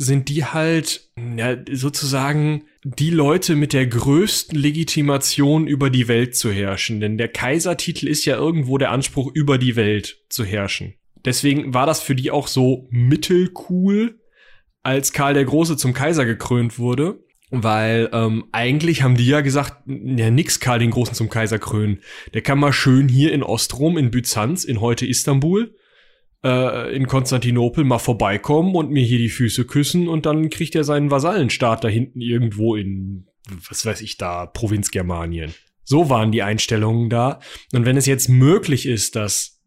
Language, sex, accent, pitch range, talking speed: German, male, German, 115-145 Hz, 165 wpm